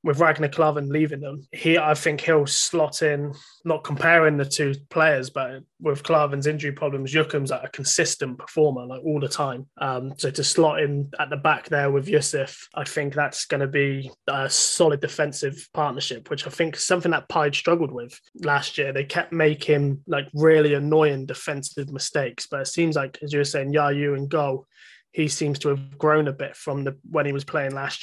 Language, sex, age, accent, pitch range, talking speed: English, male, 20-39, British, 140-155 Hz, 205 wpm